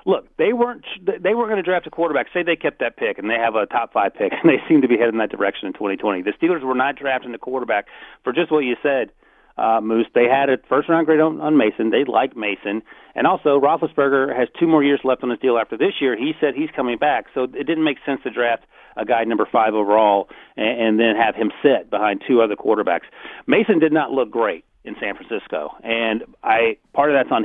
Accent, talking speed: American, 245 wpm